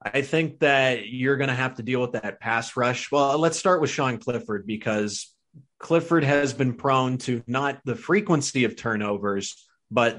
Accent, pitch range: American, 115-140 Hz